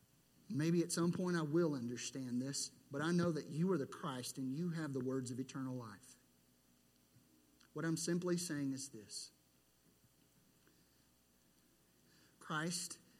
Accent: American